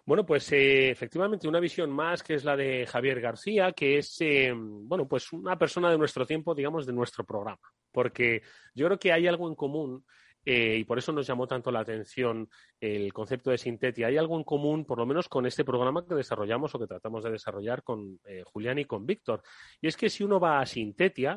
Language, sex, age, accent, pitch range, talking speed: Spanish, male, 30-49, Spanish, 115-155 Hz, 220 wpm